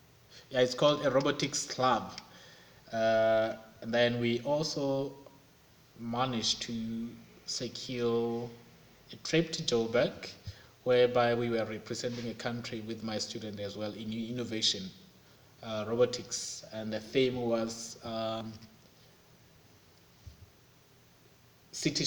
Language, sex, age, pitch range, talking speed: English, male, 20-39, 110-130 Hz, 105 wpm